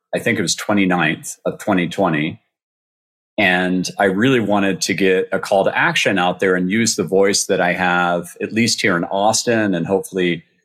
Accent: American